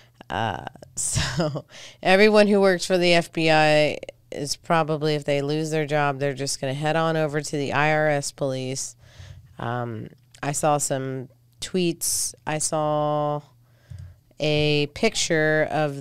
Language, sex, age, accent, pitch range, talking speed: English, female, 30-49, American, 125-160 Hz, 130 wpm